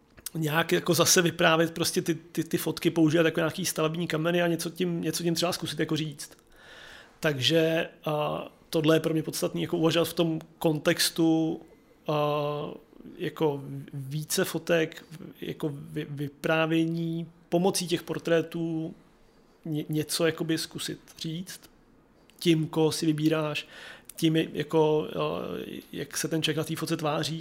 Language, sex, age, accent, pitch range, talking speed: Czech, male, 30-49, native, 155-170 Hz, 140 wpm